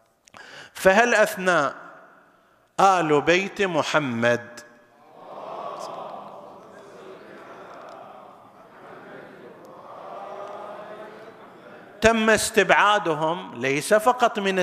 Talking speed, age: 40 wpm, 50-69